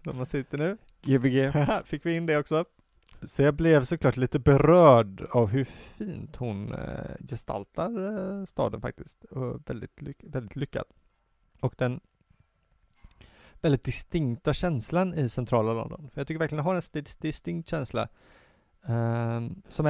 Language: Swedish